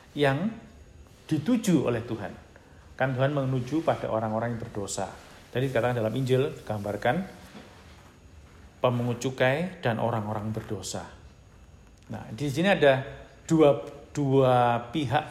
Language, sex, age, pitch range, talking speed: Indonesian, male, 50-69, 105-145 Hz, 110 wpm